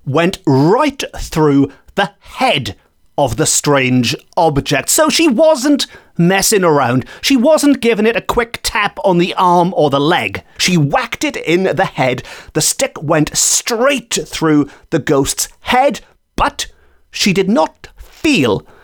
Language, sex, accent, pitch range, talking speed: English, male, British, 145-230 Hz, 145 wpm